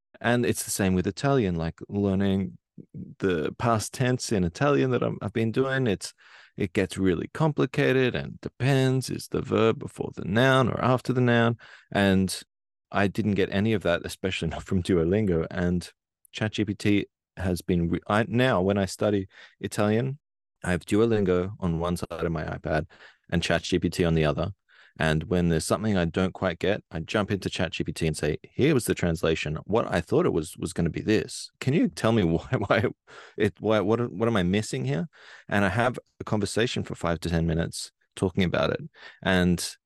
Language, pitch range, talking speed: English, 85-115 Hz, 190 wpm